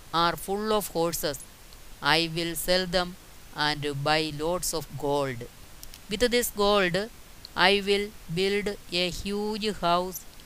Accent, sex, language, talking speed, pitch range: native, female, Malayalam, 125 wpm, 155-190 Hz